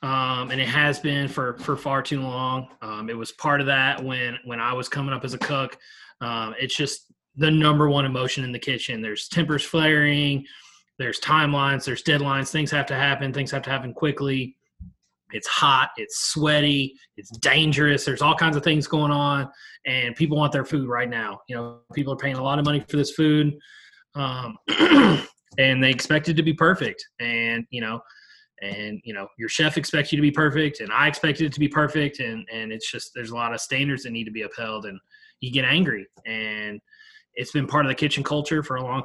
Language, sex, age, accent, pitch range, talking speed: English, male, 20-39, American, 120-150 Hz, 215 wpm